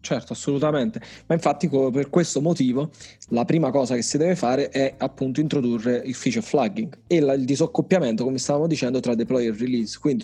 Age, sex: 20-39, male